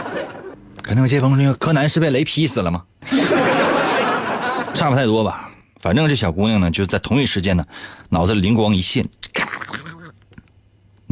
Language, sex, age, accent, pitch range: Chinese, male, 30-49, native, 95-150 Hz